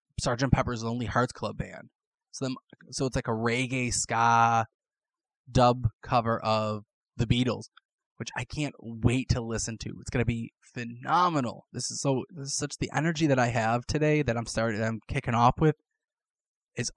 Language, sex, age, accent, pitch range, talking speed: English, male, 20-39, American, 115-145 Hz, 175 wpm